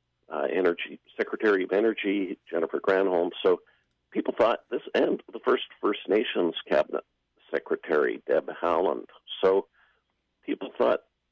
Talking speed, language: 120 wpm, English